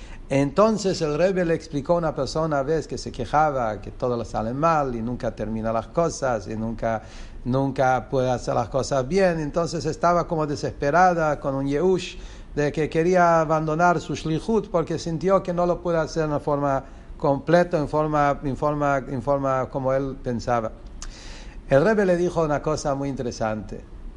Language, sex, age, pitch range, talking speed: English, male, 60-79, 115-155 Hz, 175 wpm